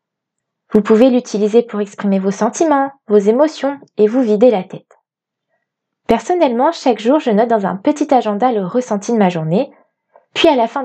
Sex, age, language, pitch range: female, 20-39, French, 210-260 Hz